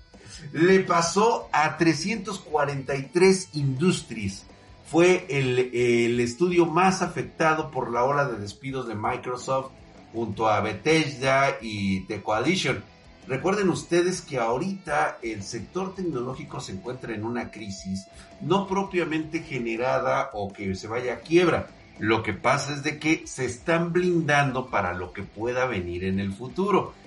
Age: 50-69